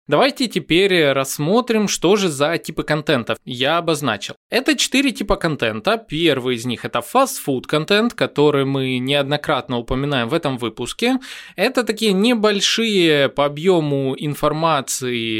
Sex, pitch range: male, 140-230 Hz